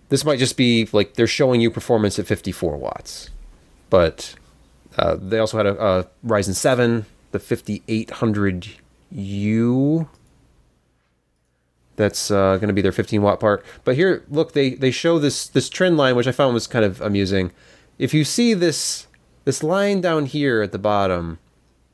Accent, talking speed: American, 160 wpm